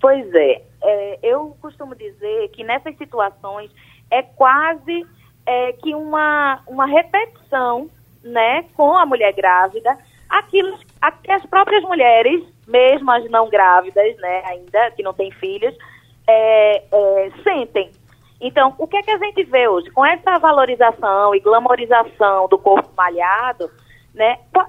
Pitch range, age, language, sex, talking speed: 220-340 Hz, 20-39, Portuguese, female, 140 wpm